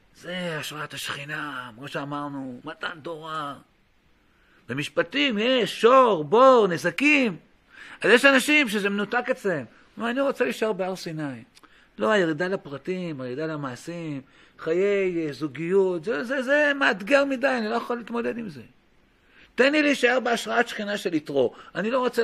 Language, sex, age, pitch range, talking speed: Hebrew, male, 50-69, 140-220 Hz, 140 wpm